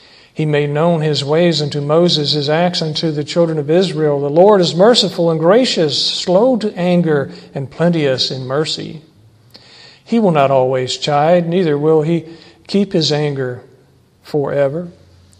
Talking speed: 150 wpm